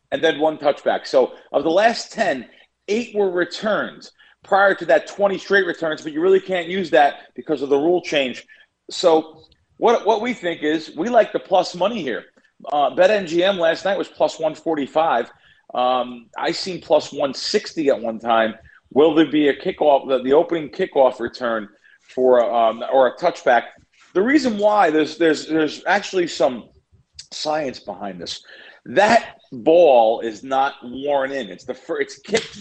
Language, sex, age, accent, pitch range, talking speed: English, male, 40-59, American, 130-185 Hz, 175 wpm